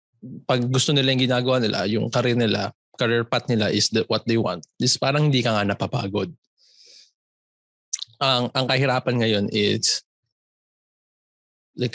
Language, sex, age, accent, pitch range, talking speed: Filipino, male, 20-39, native, 105-125 Hz, 150 wpm